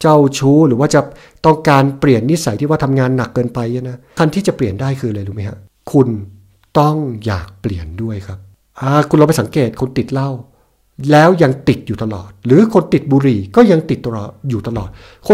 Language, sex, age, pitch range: Thai, male, 60-79, 120-170 Hz